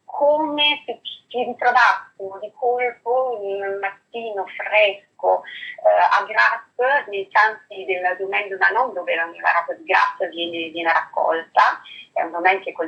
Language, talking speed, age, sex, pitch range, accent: Italian, 130 wpm, 30-49, female, 185-230 Hz, native